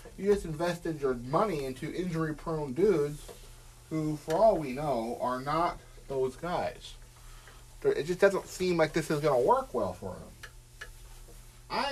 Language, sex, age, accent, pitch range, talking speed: English, male, 40-59, American, 120-165 Hz, 155 wpm